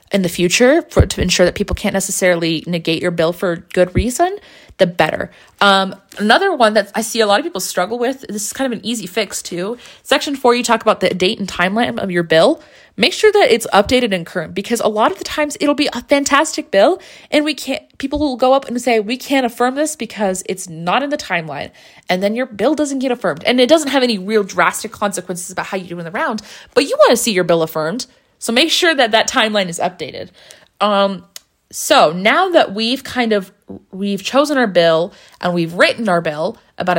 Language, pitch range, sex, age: English, 180-255 Hz, female, 20-39